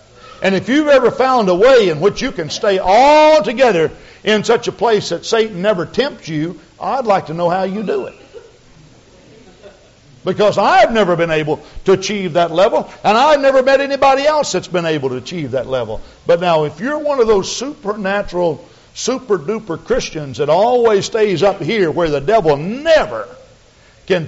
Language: English